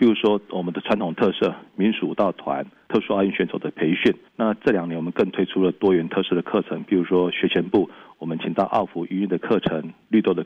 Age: 40-59